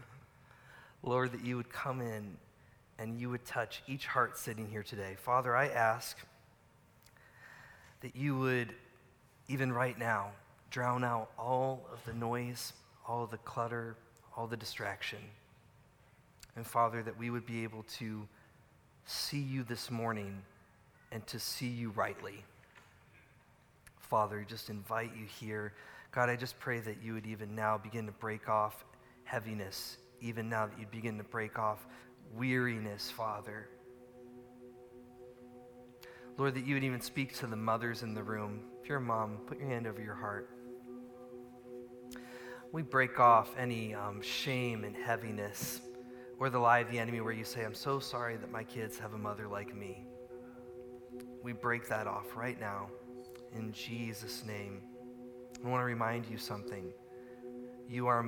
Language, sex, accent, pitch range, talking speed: English, male, American, 110-125 Hz, 155 wpm